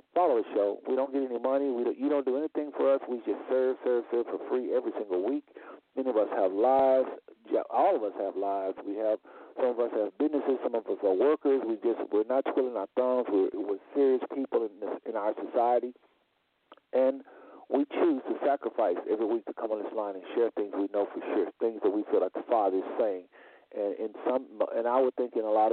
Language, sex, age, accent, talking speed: English, male, 50-69, American, 240 wpm